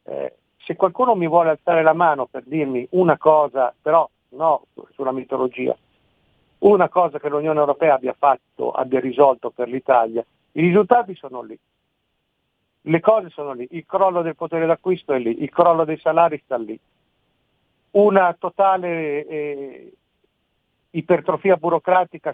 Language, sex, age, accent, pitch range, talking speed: Italian, male, 50-69, native, 150-170 Hz, 140 wpm